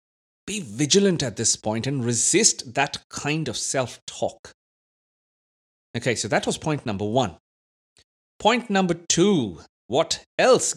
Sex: male